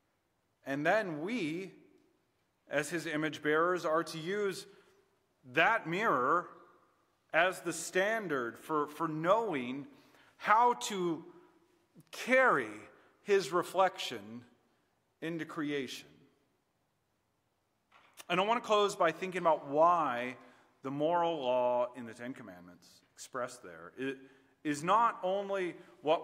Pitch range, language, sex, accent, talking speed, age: 125-185 Hz, English, male, American, 105 wpm, 40-59